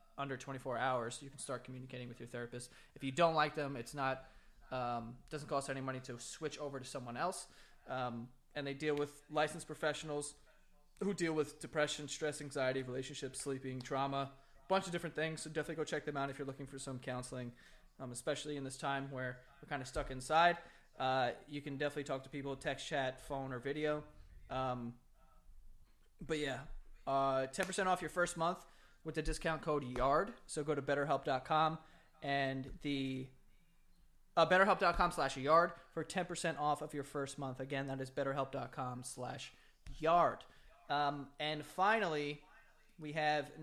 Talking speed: 170 wpm